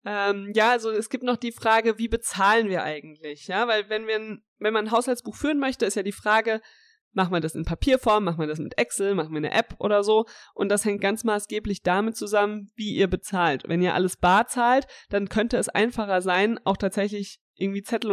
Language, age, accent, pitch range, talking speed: German, 20-39, German, 190-225 Hz, 220 wpm